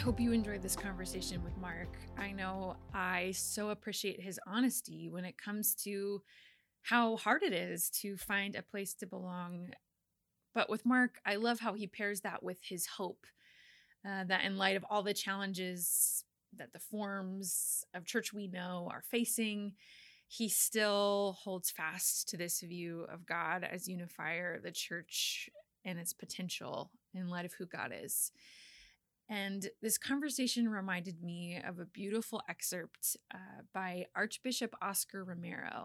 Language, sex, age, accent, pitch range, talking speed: English, female, 20-39, American, 175-210 Hz, 160 wpm